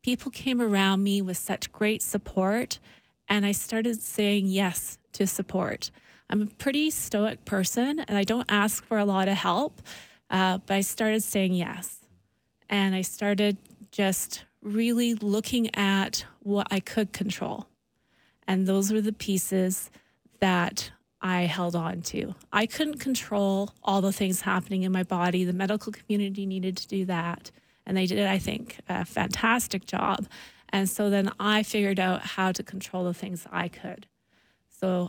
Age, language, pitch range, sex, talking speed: 20-39, English, 185-210 Hz, female, 160 wpm